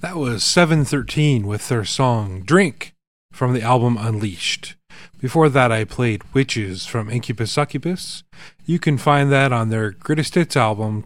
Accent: American